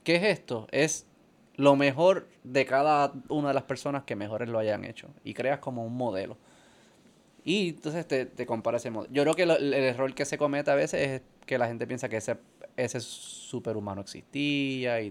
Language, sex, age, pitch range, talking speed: Spanish, male, 20-39, 120-145 Hz, 205 wpm